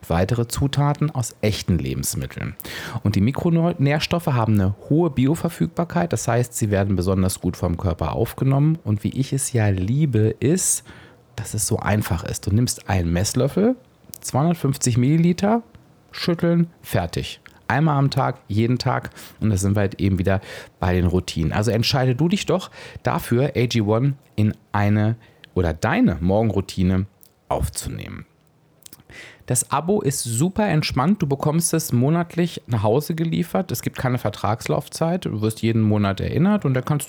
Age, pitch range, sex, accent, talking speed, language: 30-49, 100-145 Hz, male, German, 150 wpm, German